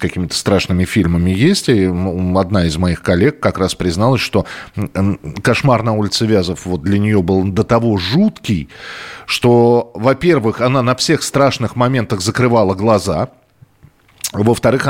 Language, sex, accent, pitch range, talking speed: Russian, male, native, 100-145 Hz, 135 wpm